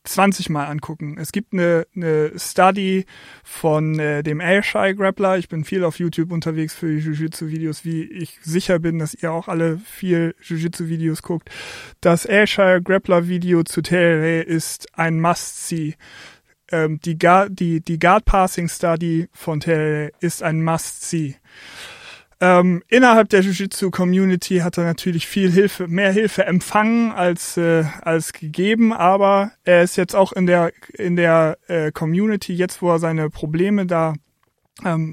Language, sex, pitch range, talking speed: German, male, 165-185 Hz, 155 wpm